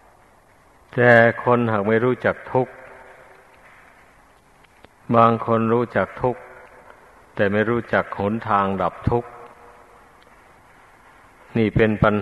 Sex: male